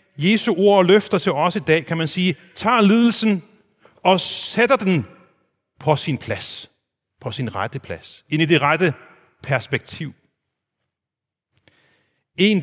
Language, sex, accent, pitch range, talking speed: Danish, male, native, 125-185 Hz, 135 wpm